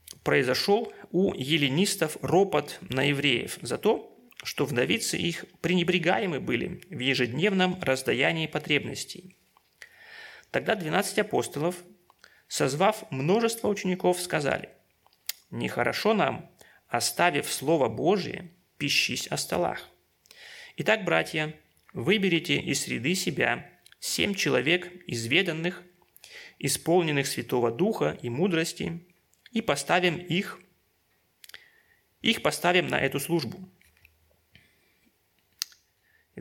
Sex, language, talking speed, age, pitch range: male, Russian, 90 wpm, 30-49, 145-185 Hz